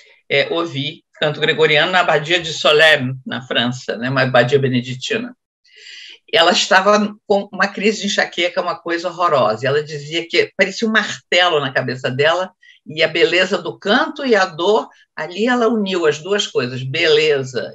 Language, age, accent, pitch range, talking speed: Portuguese, 50-69, Brazilian, 130-200 Hz, 160 wpm